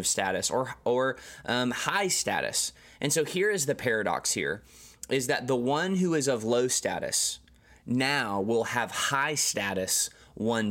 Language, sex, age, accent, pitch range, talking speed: English, male, 20-39, American, 105-135 Hz, 160 wpm